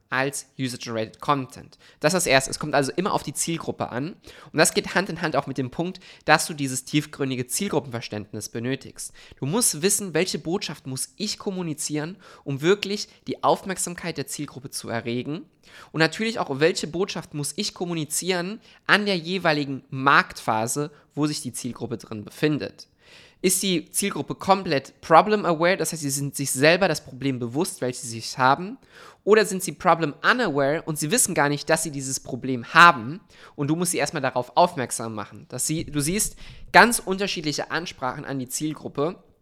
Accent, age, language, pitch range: German, 20-39, German, 130-175 Hz